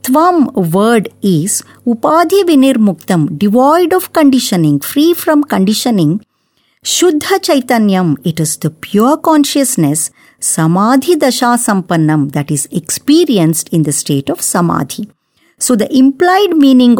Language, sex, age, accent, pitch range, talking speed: English, male, 50-69, Indian, 175-275 Hz, 120 wpm